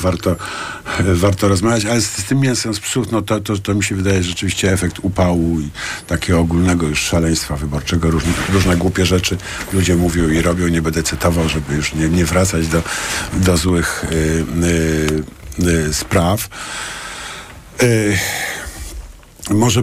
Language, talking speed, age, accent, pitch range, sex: Polish, 140 wpm, 50-69, native, 85-105 Hz, male